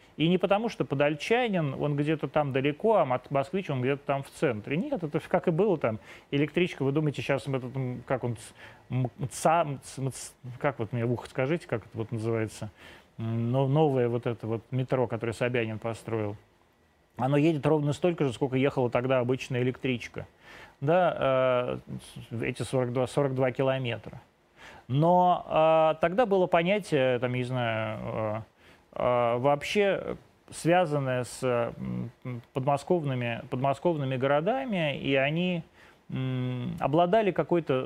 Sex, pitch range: male, 125-155 Hz